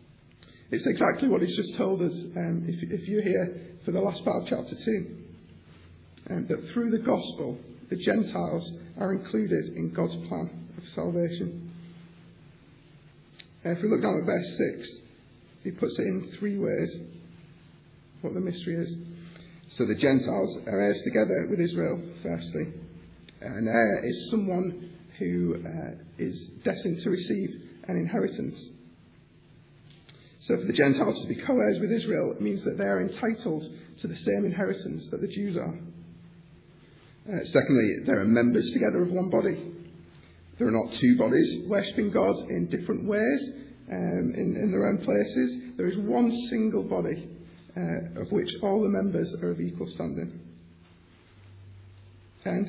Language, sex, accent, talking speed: English, male, British, 155 wpm